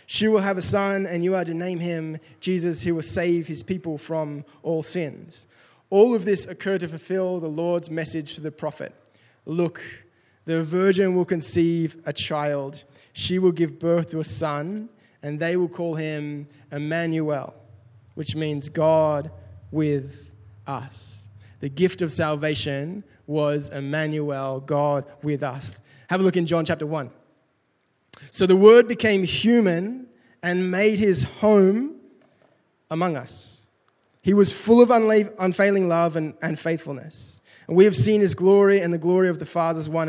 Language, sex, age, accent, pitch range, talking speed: English, male, 20-39, Australian, 145-185 Hz, 155 wpm